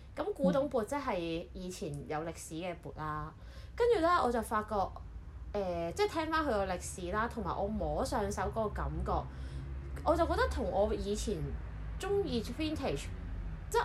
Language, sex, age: Chinese, female, 20-39